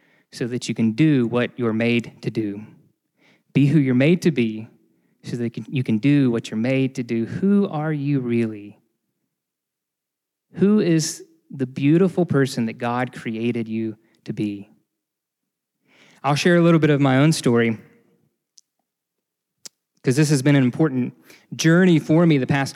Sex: male